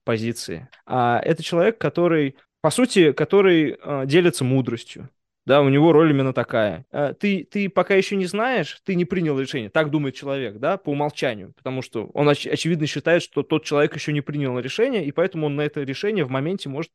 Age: 20-39